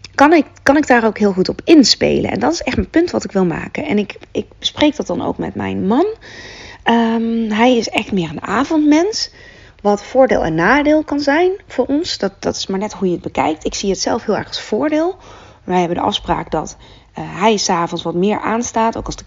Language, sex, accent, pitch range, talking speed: Dutch, female, Dutch, 175-230 Hz, 235 wpm